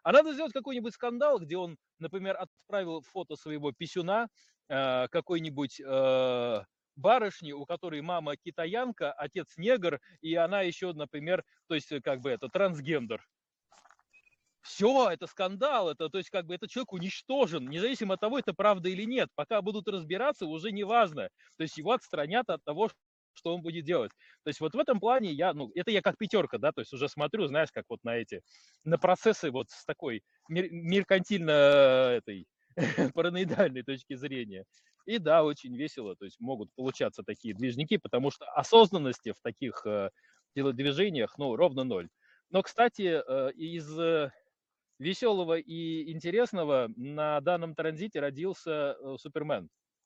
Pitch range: 145-200 Hz